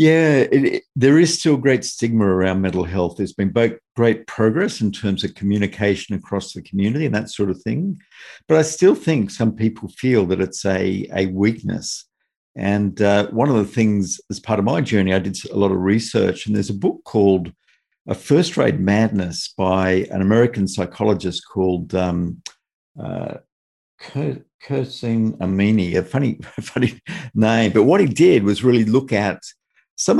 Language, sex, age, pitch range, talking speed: English, male, 50-69, 95-115 Hz, 175 wpm